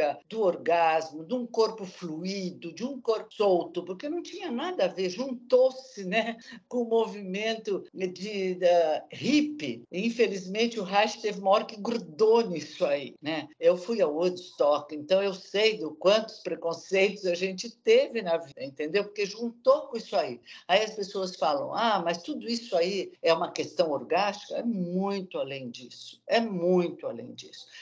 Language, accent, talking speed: Portuguese, Brazilian, 170 wpm